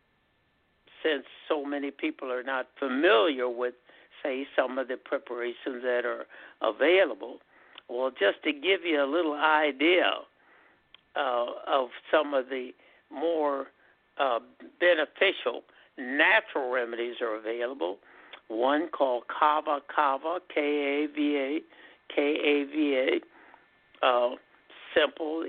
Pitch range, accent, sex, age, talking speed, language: 130-150 Hz, American, male, 60-79, 100 wpm, English